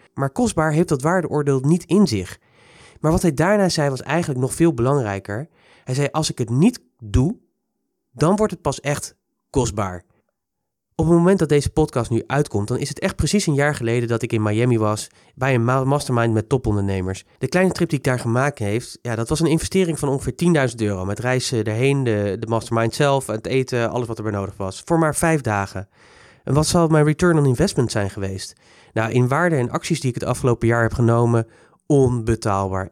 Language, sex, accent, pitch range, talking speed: Dutch, male, Dutch, 115-155 Hz, 205 wpm